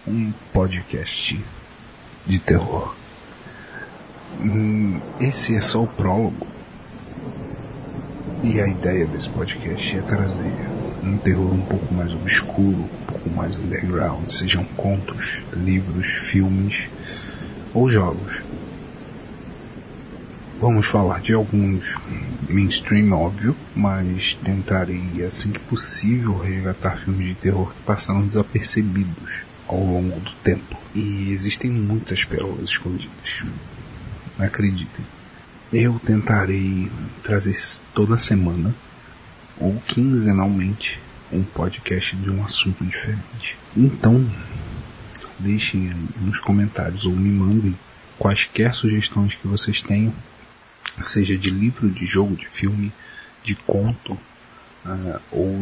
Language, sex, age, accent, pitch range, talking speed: Portuguese, male, 40-59, Brazilian, 95-110 Hz, 105 wpm